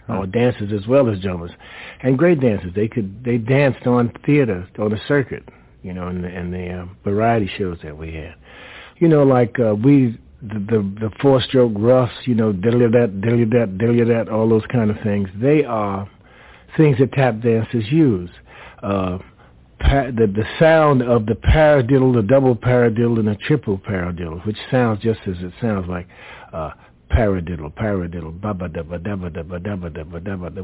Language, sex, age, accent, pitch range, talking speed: English, male, 60-79, American, 95-120 Hz, 165 wpm